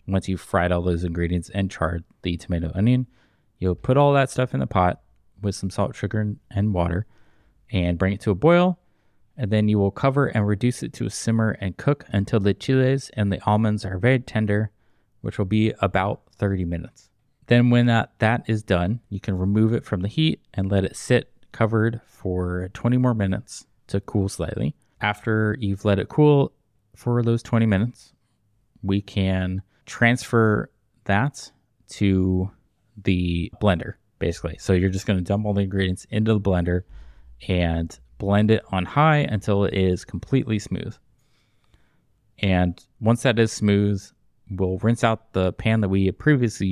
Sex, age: male, 20-39